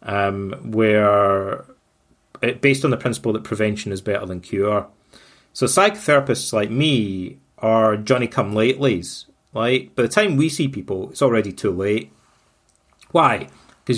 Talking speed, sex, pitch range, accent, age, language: 150 wpm, male, 100-130 Hz, British, 30-49, English